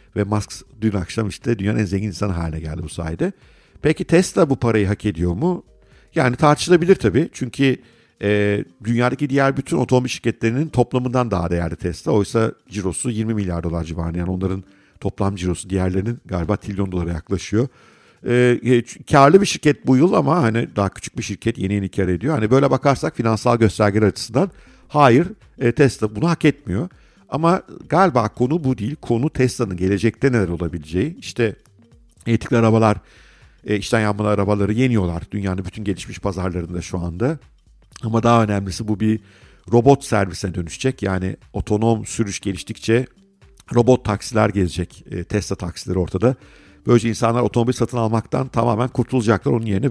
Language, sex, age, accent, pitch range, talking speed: Turkish, male, 50-69, native, 95-125 Hz, 155 wpm